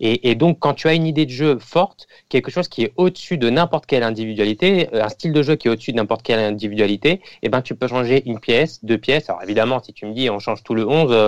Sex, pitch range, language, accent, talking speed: male, 115-150 Hz, French, French, 260 wpm